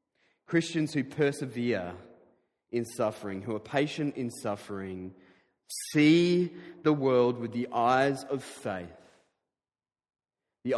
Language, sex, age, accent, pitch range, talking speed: English, male, 30-49, Australian, 115-145 Hz, 105 wpm